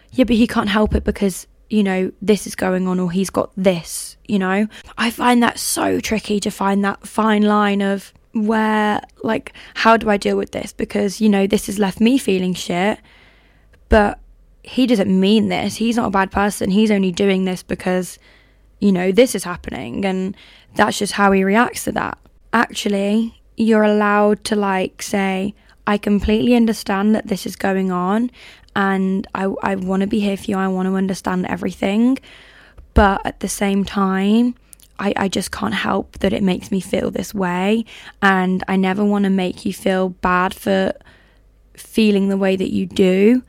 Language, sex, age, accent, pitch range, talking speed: English, female, 10-29, British, 190-220 Hz, 190 wpm